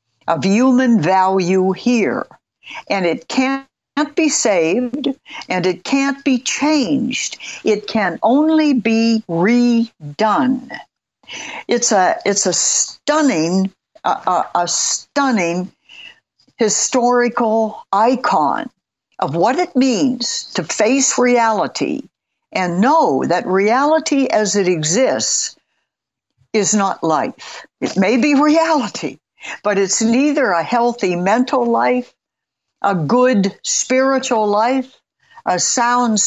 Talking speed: 105 wpm